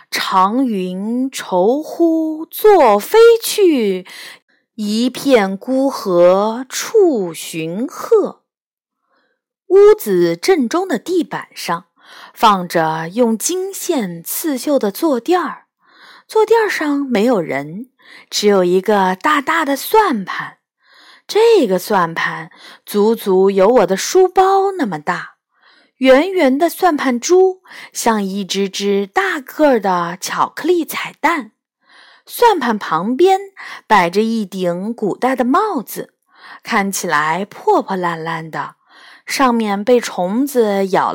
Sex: female